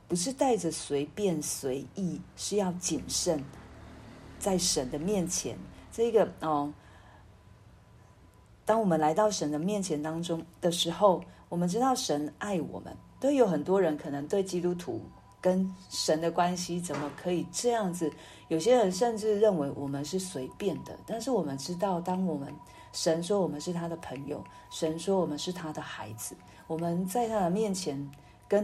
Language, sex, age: Chinese, female, 40-59